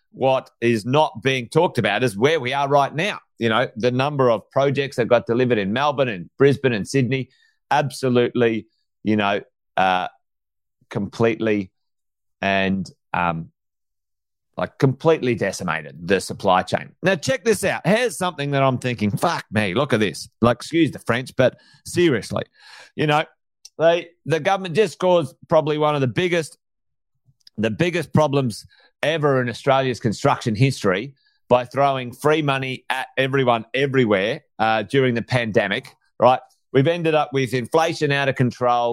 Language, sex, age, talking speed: English, male, 30-49, 155 wpm